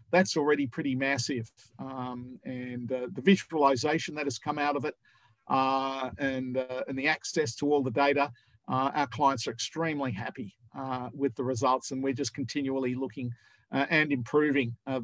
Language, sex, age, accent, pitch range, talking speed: English, male, 50-69, Australian, 130-150 Hz, 175 wpm